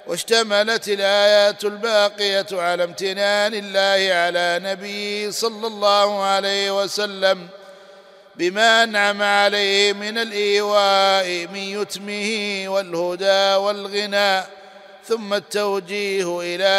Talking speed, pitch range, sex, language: 85 wpm, 195-210 Hz, male, Arabic